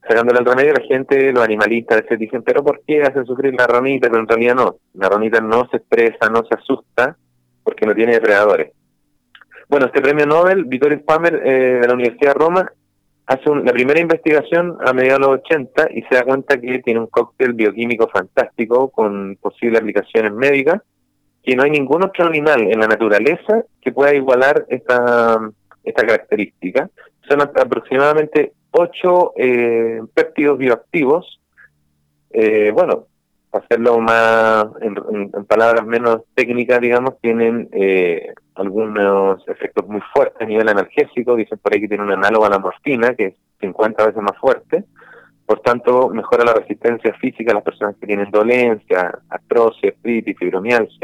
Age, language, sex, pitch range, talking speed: 30-49, Spanish, male, 110-145 Hz, 165 wpm